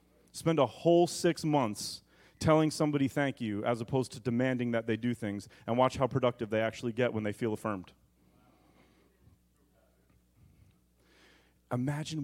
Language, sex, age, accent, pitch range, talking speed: English, male, 30-49, American, 105-145 Hz, 140 wpm